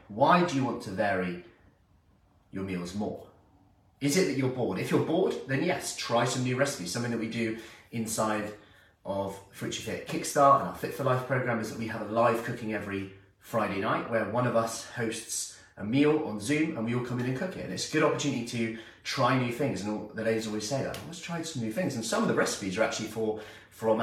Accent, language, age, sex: British, English, 30-49, male